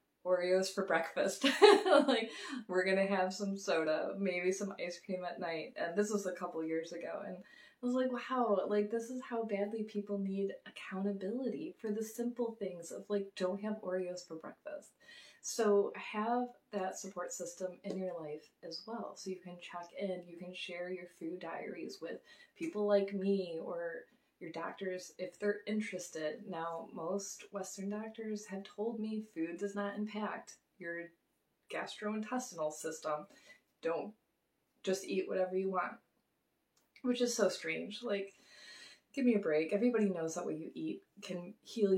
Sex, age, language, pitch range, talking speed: female, 20-39, English, 170-215 Hz, 165 wpm